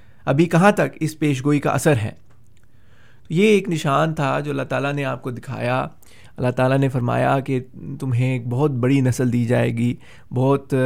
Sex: male